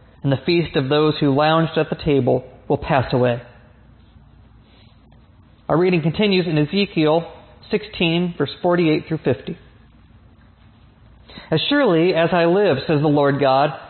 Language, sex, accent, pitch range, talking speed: English, male, American, 120-175 Hz, 140 wpm